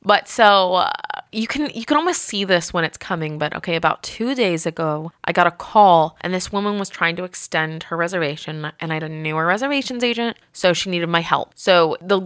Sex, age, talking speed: female, 20-39, 225 wpm